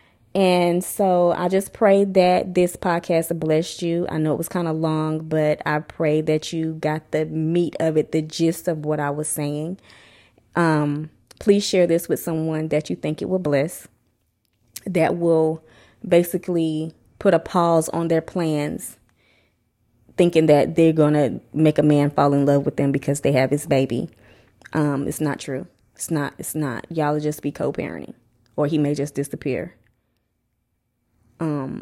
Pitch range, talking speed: 140-175 Hz, 170 wpm